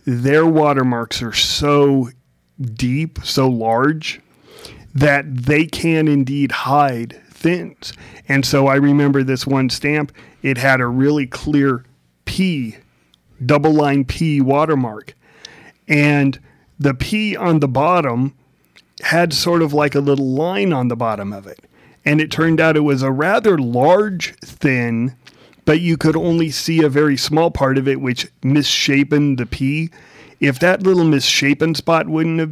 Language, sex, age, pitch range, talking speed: English, male, 40-59, 125-155 Hz, 150 wpm